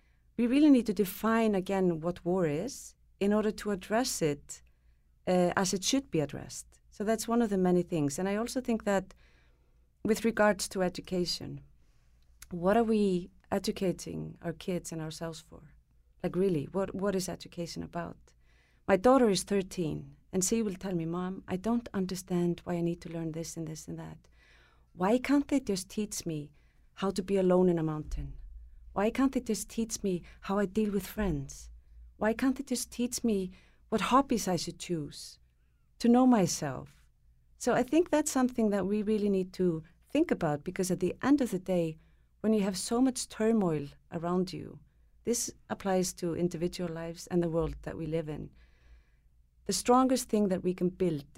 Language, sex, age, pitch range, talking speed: English, female, 30-49, 160-210 Hz, 185 wpm